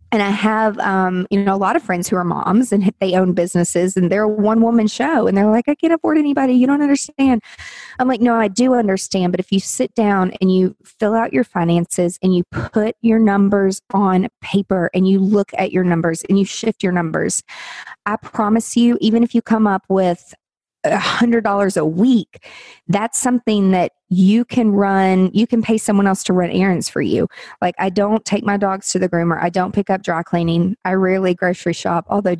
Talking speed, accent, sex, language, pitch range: 220 wpm, American, female, English, 185-230 Hz